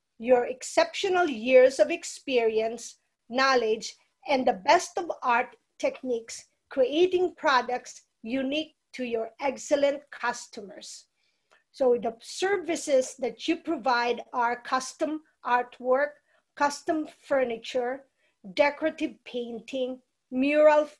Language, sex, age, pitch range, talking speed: English, female, 50-69, 245-310 Hz, 95 wpm